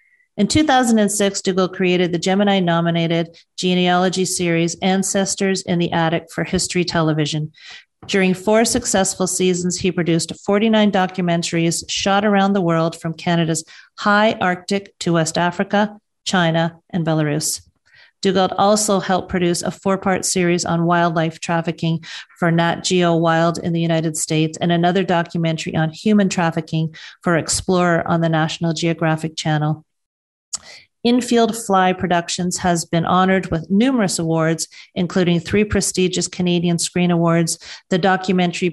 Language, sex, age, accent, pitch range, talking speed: English, female, 40-59, American, 165-190 Hz, 135 wpm